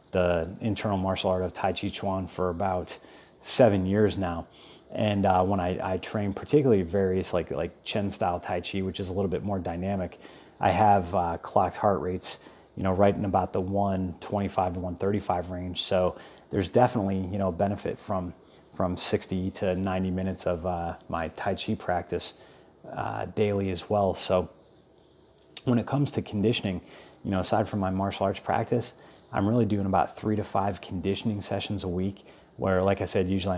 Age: 30-49